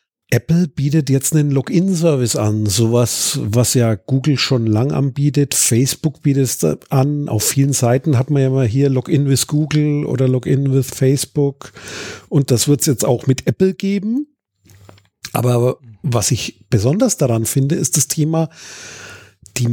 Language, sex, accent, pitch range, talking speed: German, male, German, 125-160 Hz, 155 wpm